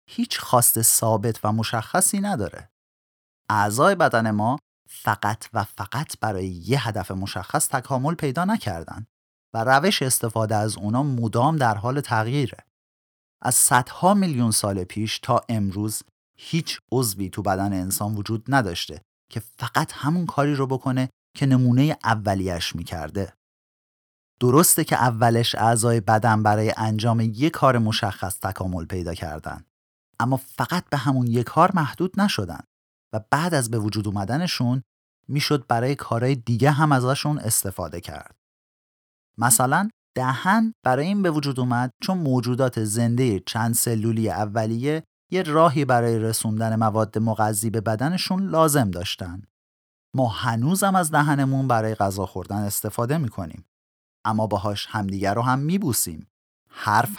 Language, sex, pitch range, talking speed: Persian, male, 105-140 Hz, 130 wpm